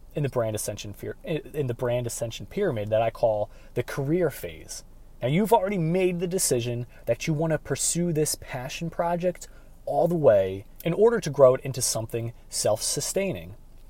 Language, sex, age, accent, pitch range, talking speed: English, male, 30-49, American, 110-150 Hz, 175 wpm